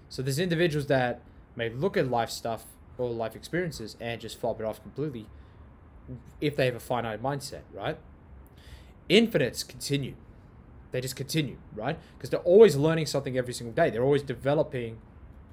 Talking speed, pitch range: 160 wpm, 85-135 Hz